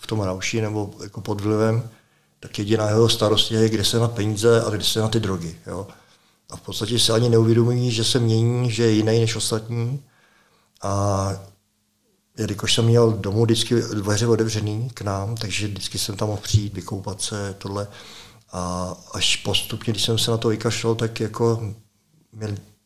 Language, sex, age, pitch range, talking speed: Czech, male, 50-69, 100-115 Hz, 175 wpm